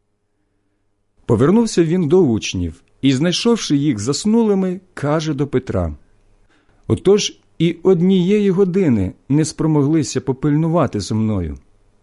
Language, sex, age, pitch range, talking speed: Ukrainian, male, 50-69, 100-165 Hz, 100 wpm